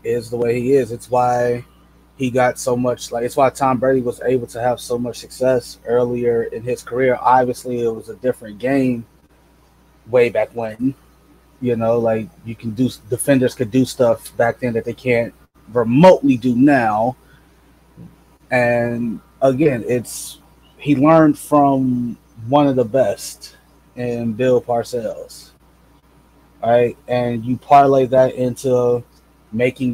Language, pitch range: English, 120-135 Hz